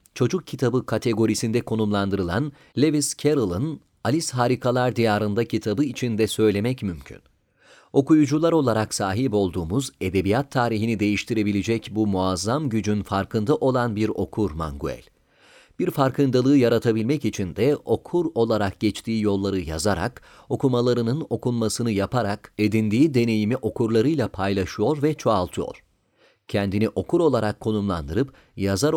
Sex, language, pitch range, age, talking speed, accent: male, Turkish, 100-130 Hz, 40-59, 110 wpm, native